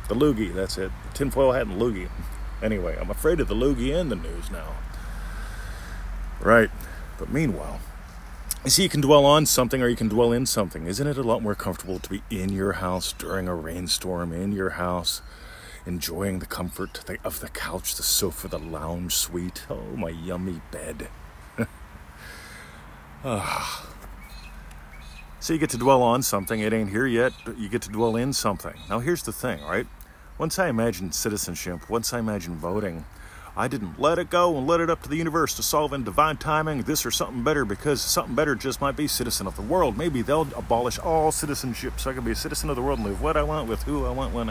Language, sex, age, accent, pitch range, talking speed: English, male, 40-59, American, 85-130 Hz, 205 wpm